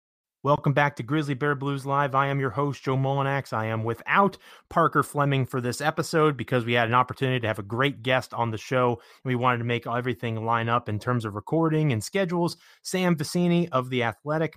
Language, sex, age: English, male, 30-49